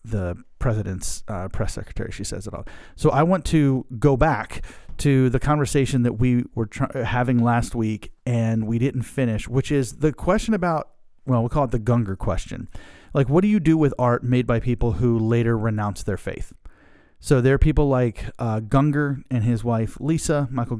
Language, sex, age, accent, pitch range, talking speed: English, male, 30-49, American, 110-135 Hz, 200 wpm